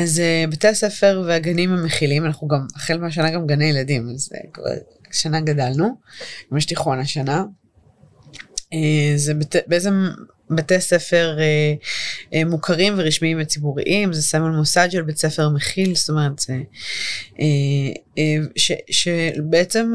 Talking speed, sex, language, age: 125 wpm, female, Hebrew, 20-39